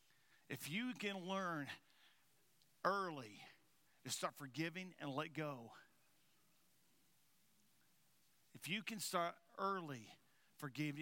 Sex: male